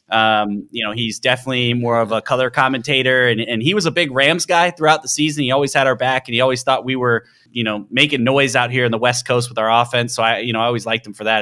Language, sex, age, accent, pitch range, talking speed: English, male, 20-39, American, 115-135 Hz, 290 wpm